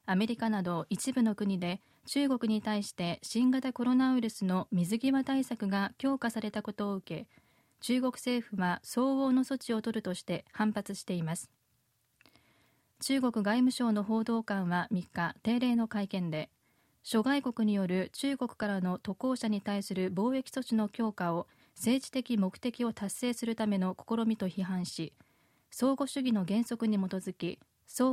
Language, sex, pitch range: Japanese, female, 185-245 Hz